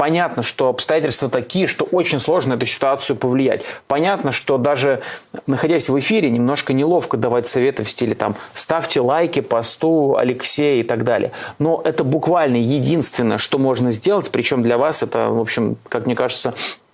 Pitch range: 125-155 Hz